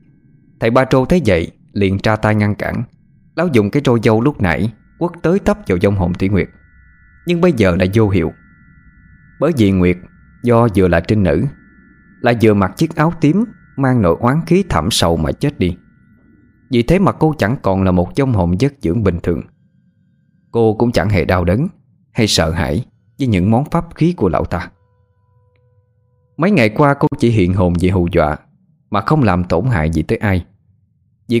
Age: 20-39